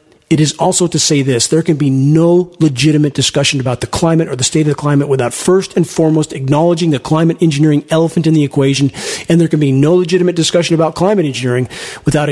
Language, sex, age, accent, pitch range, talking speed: English, male, 40-59, American, 140-170 Hz, 215 wpm